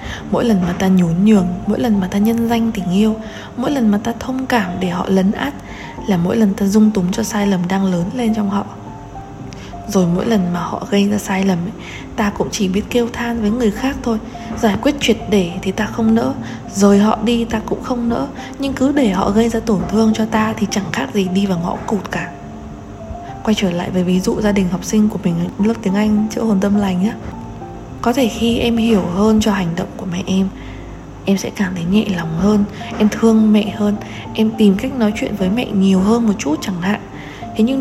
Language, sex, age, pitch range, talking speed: Vietnamese, female, 20-39, 190-230 Hz, 235 wpm